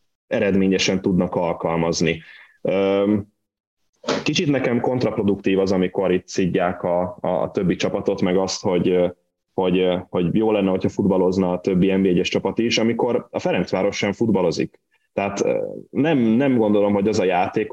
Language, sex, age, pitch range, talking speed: Hungarian, male, 10-29, 90-105 Hz, 140 wpm